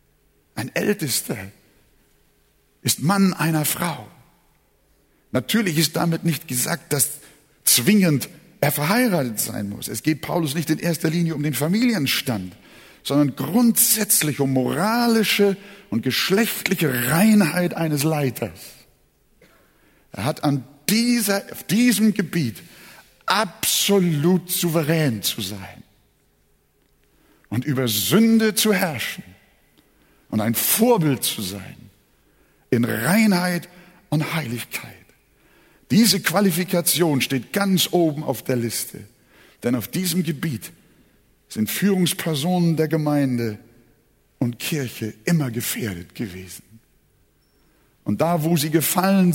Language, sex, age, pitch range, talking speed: German, male, 60-79, 125-185 Hz, 105 wpm